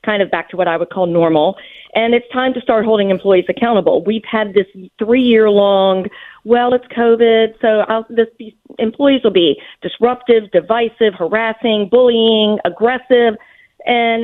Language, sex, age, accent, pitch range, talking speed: English, female, 40-59, American, 200-240 Hz, 145 wpm